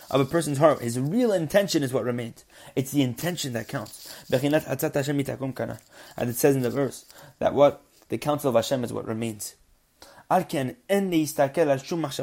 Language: English